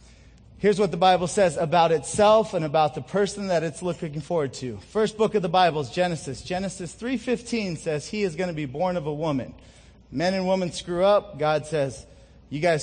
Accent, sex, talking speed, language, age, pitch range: American, male, 205 wpm, English, 30-49, 135-185 Hz